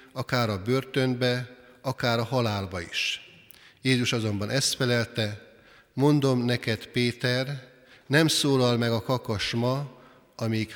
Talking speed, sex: 115 wpm, male